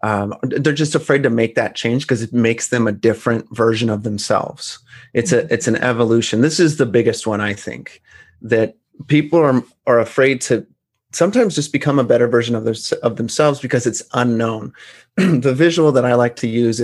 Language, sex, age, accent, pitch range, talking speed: English, male, 30-49, American, 115-150 Hz, 195 wpm